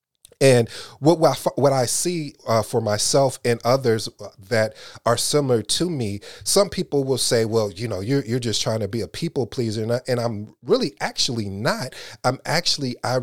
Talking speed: 195 wpm